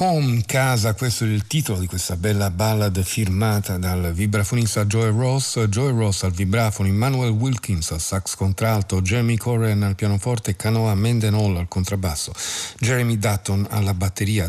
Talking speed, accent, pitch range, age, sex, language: 150 wpm, native, 95-115 Hz, 50-69, male, Italian